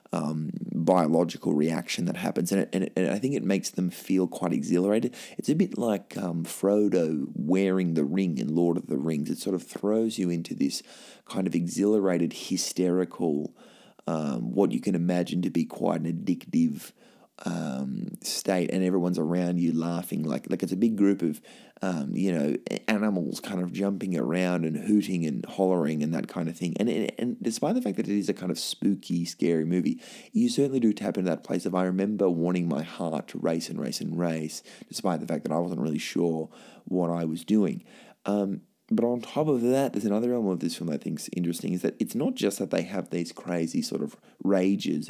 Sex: male